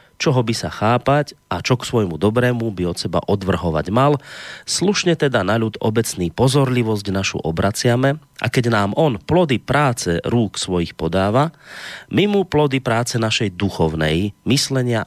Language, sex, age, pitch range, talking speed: Slovak, male, 30-49, 100-130 Hz, 150 wpm